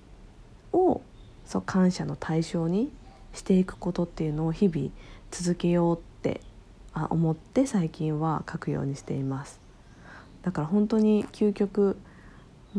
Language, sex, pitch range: Japanese, female, 140-205 Hz